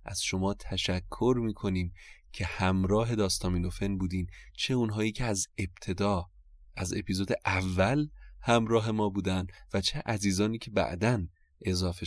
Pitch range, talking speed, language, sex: 90-115 Hz, 125 wpm, Persian, male